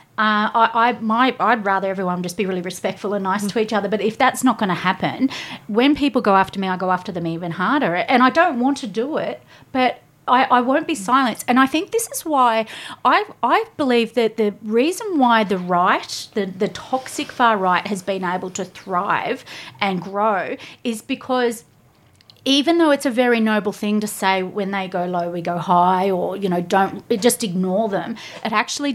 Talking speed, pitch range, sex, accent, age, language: 210 wpm, 190-245 Hz, female, Australian, 30-49, English